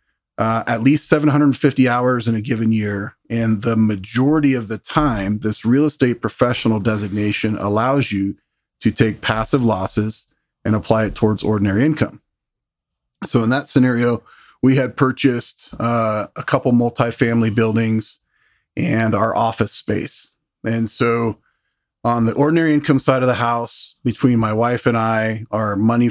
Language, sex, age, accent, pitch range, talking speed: English, male, 40-59, American, 110-120 Hz, 150 wpm